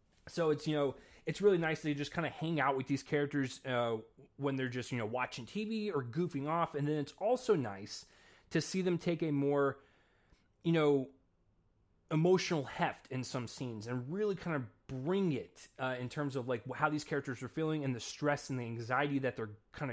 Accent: American